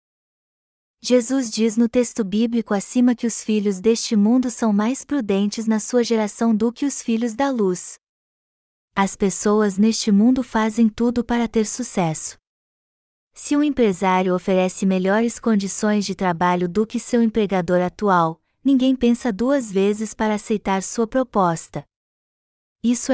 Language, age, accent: Portuguese, 20-39, Brazilian